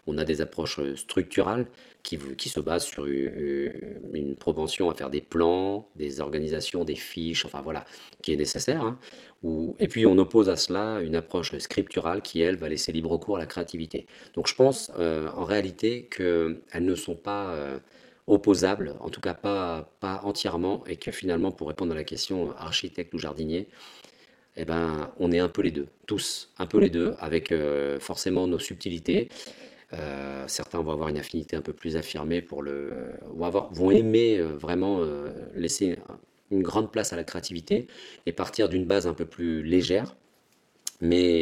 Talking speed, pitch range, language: 180 wpm, 75-95 Hz, French